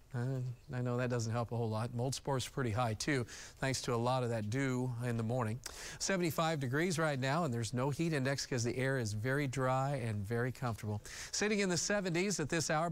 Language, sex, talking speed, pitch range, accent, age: English, male, 230 wpm, 125-145 Hz, American, 40-59